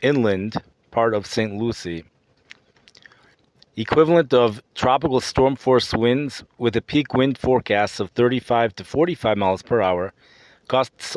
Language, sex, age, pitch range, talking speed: English, male, 40-59, 110-130 Hz, 130 wpm